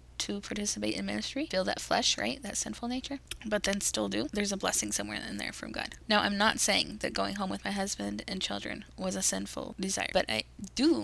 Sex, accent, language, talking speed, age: female, American, English, 230 wpm, 10-29